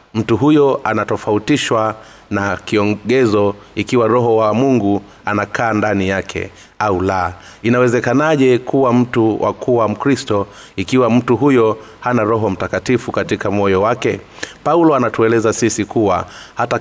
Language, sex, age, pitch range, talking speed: Swahili, male, 30-49, 105-125 Hz, 120 wpm